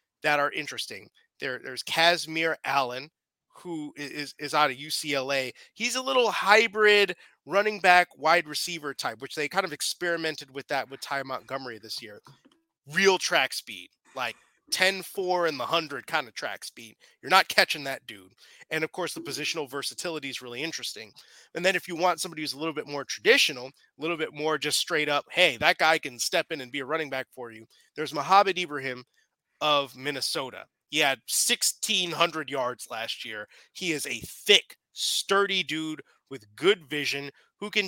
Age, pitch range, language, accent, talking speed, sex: 30-49, 140-180 Hz, English, American, 180 wpm, male